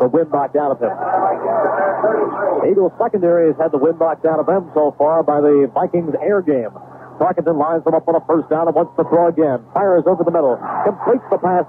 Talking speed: 225 wpm